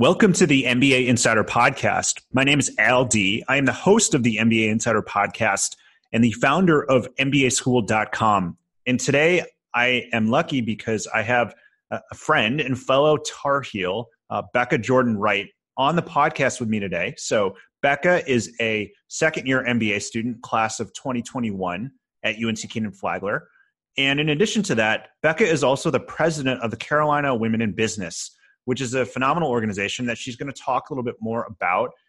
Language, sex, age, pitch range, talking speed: English, male, 30-49, 110-140 Hz, 175 wpm